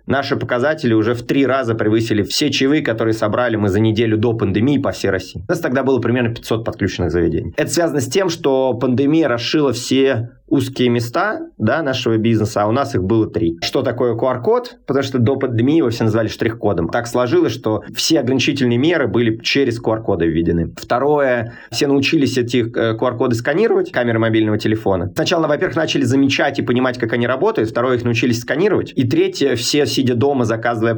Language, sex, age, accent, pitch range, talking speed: Russian, male, 30-49, native, 110-130 Hz, 185 wpm